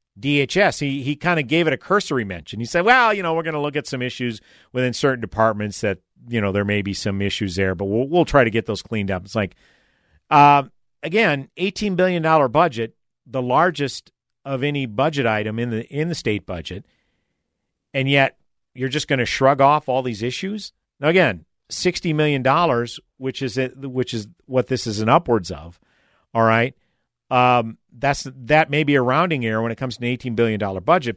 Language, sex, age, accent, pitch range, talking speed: English, male, 50-69, American, 115-155 Hz, 210 wpm